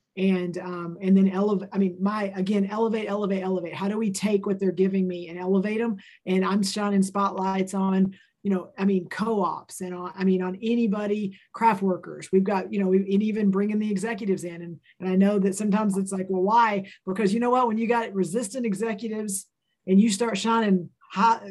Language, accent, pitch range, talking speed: English, American, 190-210 Hz, 210 wpm